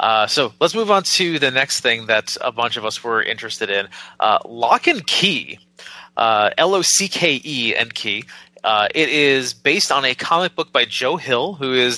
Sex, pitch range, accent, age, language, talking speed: male, 115-155 Hz, American, 30-49, English, 210 wpm